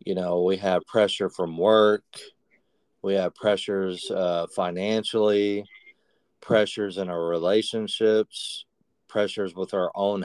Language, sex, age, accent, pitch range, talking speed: English, male, 40-59, American, 90-105 Hz, 115 wpm